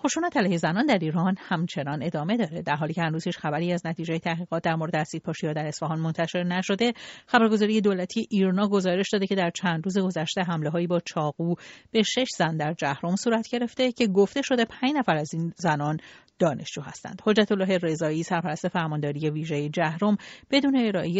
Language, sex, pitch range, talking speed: Persian, female, 160-210 Hz, 175 wpm